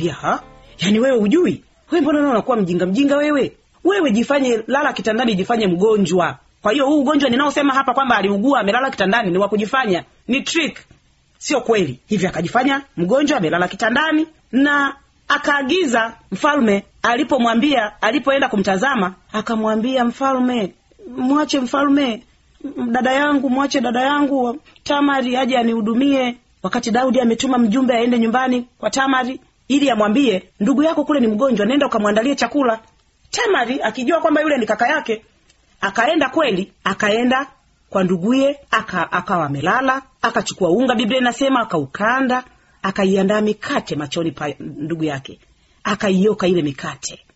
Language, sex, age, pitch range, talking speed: Swahili, female, 40-59, 200-275 Hz, 135 wpm